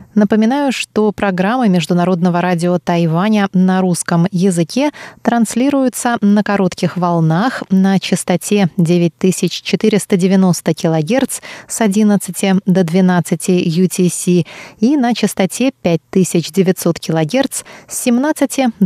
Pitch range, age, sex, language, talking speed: 175-225 Hz, 20-39, female, Russian, 90 wpm